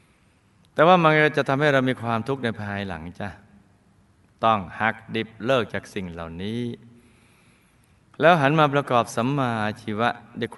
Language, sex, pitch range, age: Thai, male, 95-120 Hz, 20-39